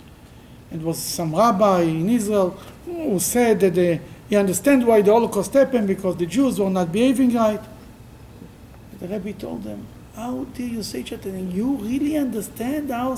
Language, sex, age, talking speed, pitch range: English, male, 50-69, 170 wpm, 200-310 Hz